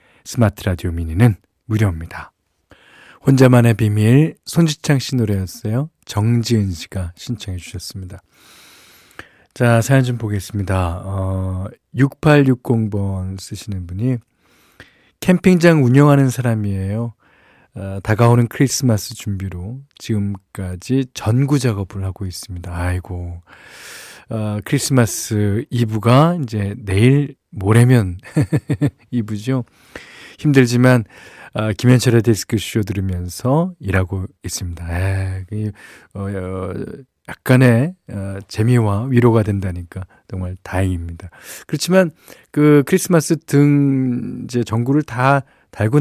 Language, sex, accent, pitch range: Korean, male, native, 95-135 Hz